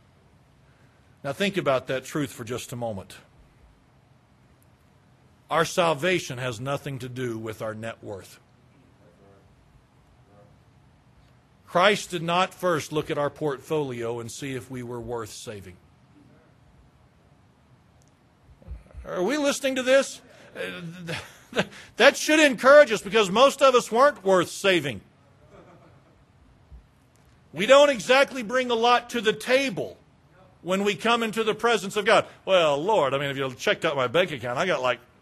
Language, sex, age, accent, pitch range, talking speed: English, male, 50-69, American, 130-200 Hz, 140 wpm